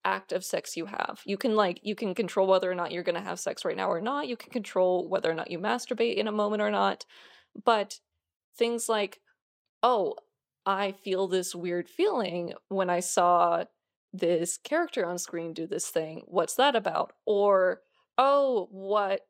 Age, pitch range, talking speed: 20-39, 175-220 Hz, 190 wpm